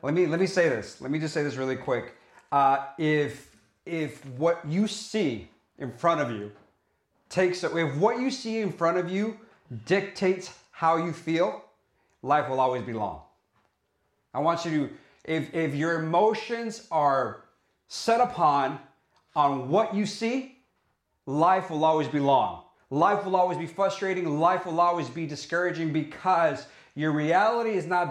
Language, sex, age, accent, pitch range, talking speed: English, male, 40-59, American, 145-185 Hz, 160 wpm